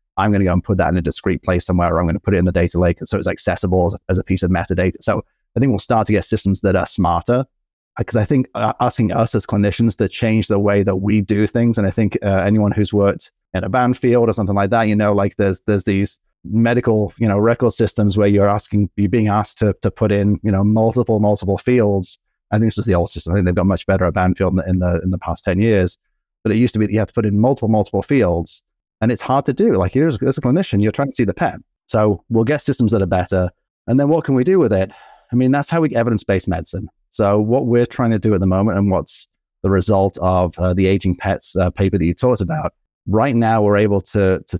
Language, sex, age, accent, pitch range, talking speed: English, male, 30-49, British, 95-110 Hz, 275 wpm